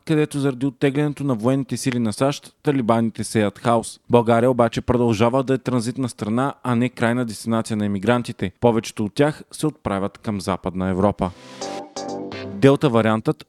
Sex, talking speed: male, 145 wpm